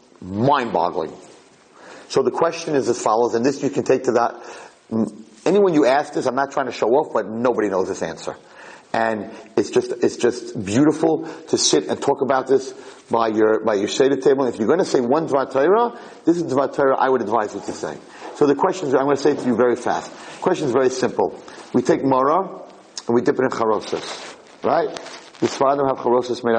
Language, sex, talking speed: English, male, 220 wpm